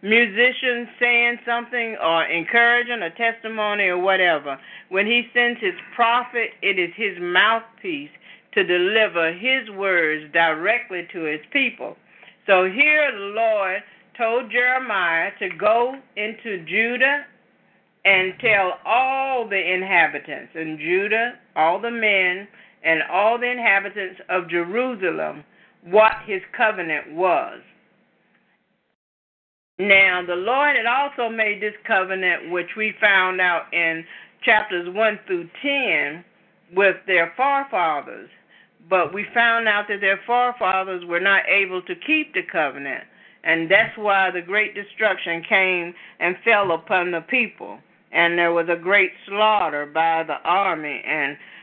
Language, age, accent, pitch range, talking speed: English, 50-69, American, 180-240 Hz, 130 wpm